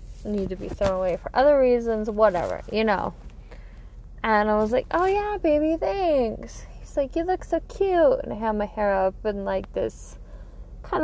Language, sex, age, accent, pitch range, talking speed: English, female, 10-29, American, 220-330 Hz, 190 wpm